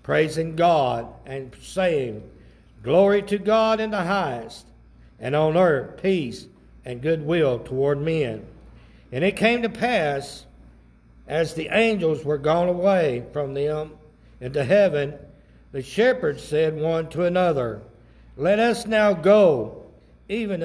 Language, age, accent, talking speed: English, 60-79, American, 130 wpm